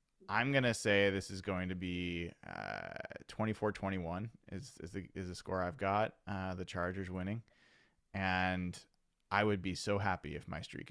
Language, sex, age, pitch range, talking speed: English, male, 20-39, 100-140 Hz, 180 wpm